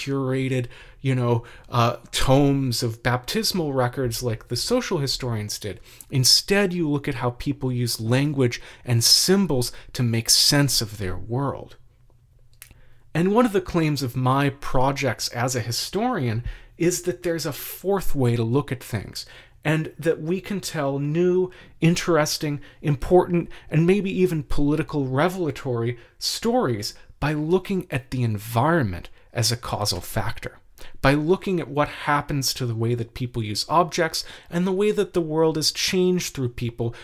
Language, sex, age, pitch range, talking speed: English, male, 40-59, 120-170 Hz, 155 wpm